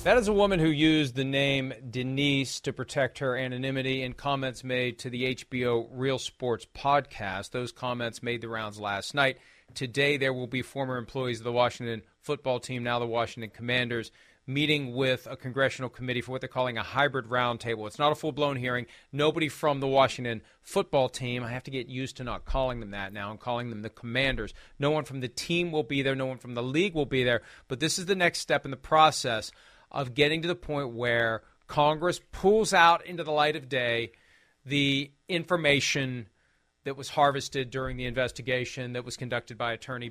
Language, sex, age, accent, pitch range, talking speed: English, male, 40-59, American, 125-160 Hz, 200 wpm